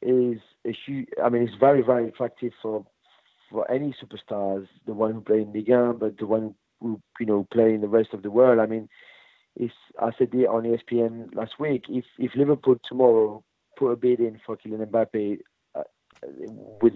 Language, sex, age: English, male, 40-59